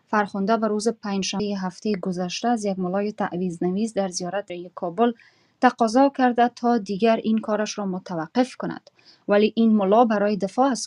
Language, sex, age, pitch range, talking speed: Persian, female, 30-49, 195-230 Hz, 165 wpm